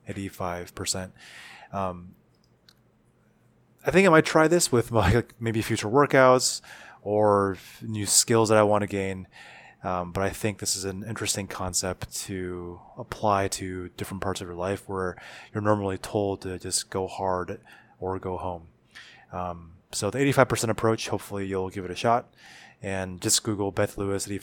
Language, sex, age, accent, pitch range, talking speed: English, male, 20-39, American, 95-110 Hz, 160 wpm